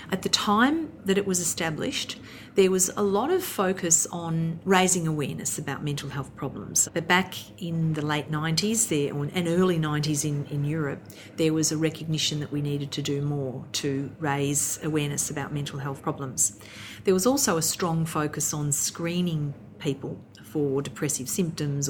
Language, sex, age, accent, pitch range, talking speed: English, female, 40-59, Australian, 145-180 Hz, 170 wpm